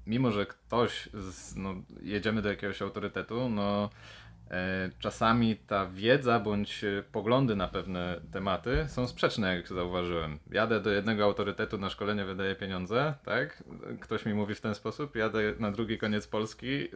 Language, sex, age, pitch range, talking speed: Polish, male, 20-39, 95-110 Hz, 140 wpm